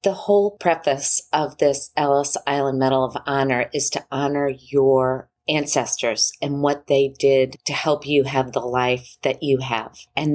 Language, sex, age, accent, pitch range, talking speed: English, female, 40-59, American, 125-140 Hz, 170 wpm